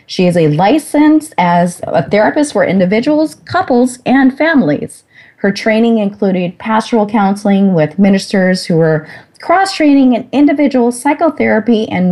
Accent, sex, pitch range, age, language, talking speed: American, female, 175-245 Hz, 30-49, English, 130 wpm